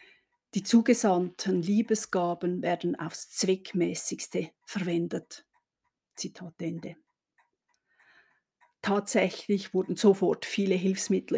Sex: female